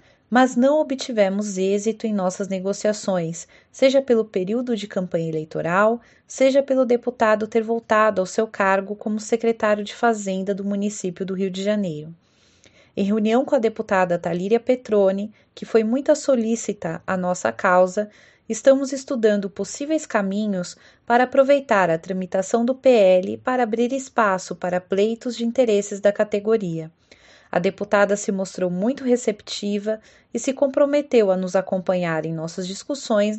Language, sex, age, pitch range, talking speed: Portuguese, female, 30-49, 190-235 Hz, 140 wpm